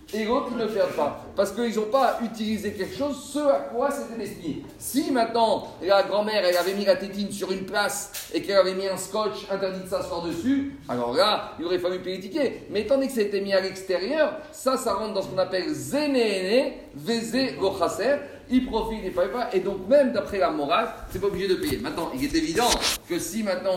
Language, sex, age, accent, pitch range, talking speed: French, male, 40-59, French, 190-245 Hz, 225 wpm